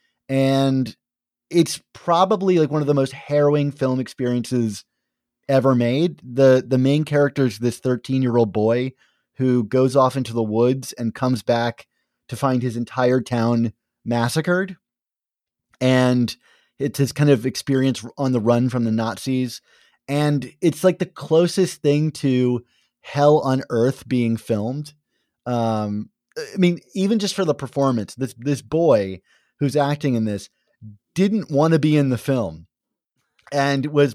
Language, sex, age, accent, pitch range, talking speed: English, male, 30-49, American, 120-155 Hz, 150 wpm